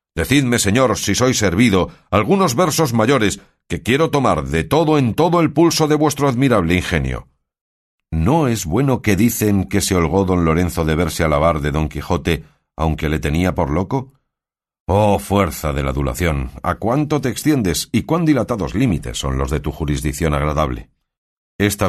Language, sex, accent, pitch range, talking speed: Spanish, male, Spanish, 80-120 Hz, 170 wpm